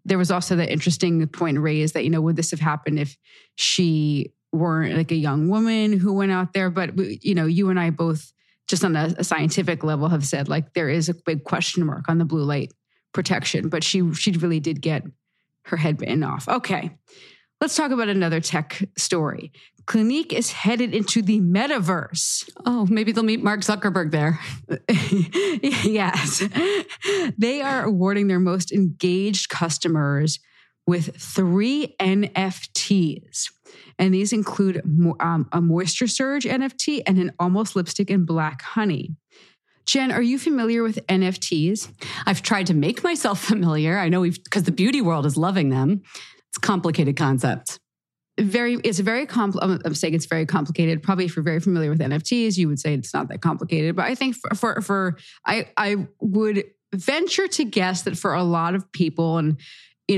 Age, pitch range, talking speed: 30-49, 165-205 Hz, 175 wpm